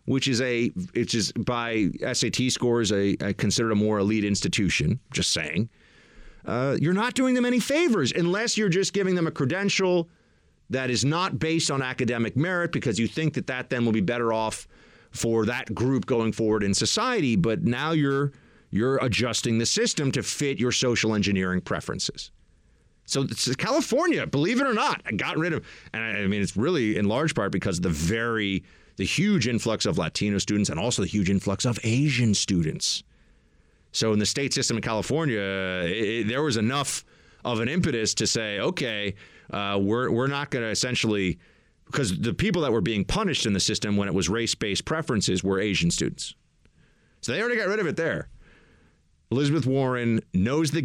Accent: American